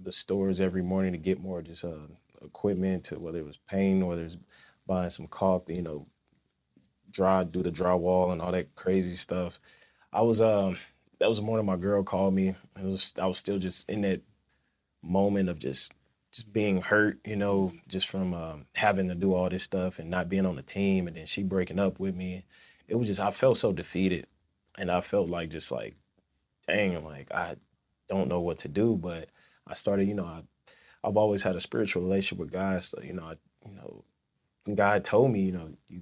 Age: 20-39